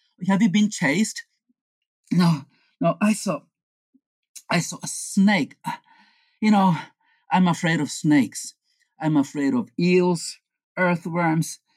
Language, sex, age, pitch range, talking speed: English, male, 50-69, 190-265 Hz, 115 wpm